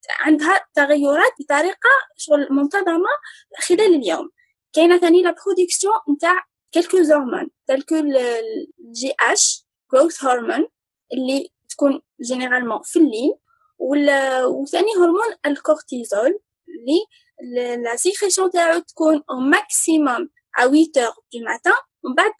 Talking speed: 105 wpm